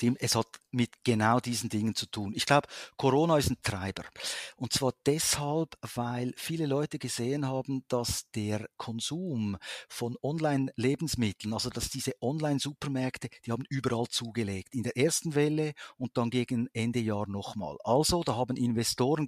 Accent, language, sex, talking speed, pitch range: Austrian, German, male, 155 wpm, 120-150 Hz